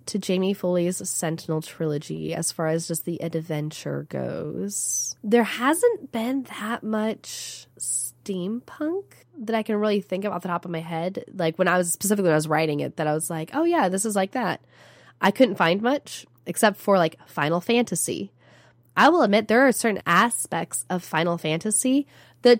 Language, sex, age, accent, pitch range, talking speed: English, female, 10-29, American, 155-205 Hz, 185 wpm